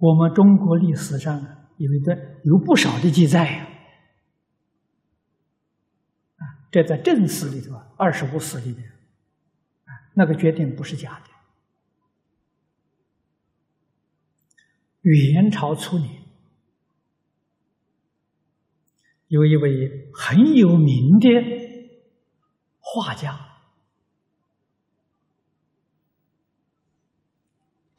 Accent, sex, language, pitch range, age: native, male, Chinese, 135-165 Hz, 50-69